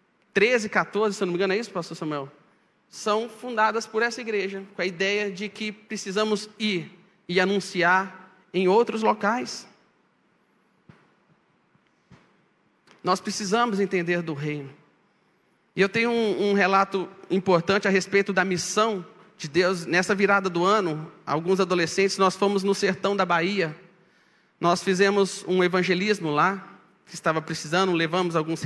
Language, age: Portuguese, 40-59